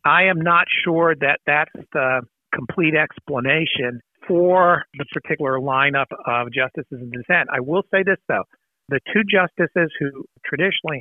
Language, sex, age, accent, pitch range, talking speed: English, male, 50-69, American, 135-170 Hz, 145 wpm